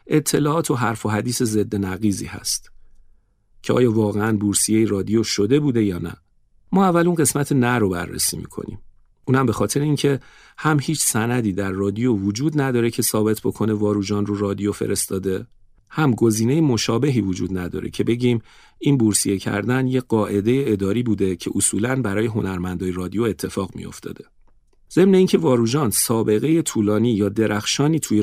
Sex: male